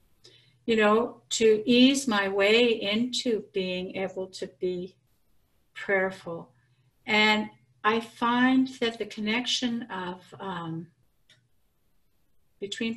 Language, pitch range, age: English, 170-210 Hz, 60-79